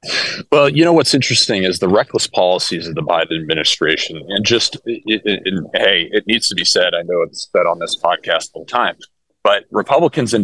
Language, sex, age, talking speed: English, male, 30-49, 215 wpm